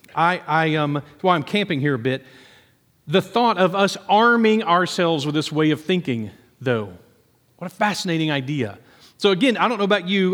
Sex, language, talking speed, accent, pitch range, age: male, English, 185 wpm, American, 150-185 Hz, 40-59